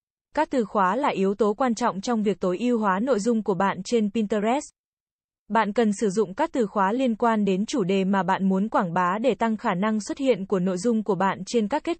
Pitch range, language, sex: 200-240 Hz, Vietnamese, female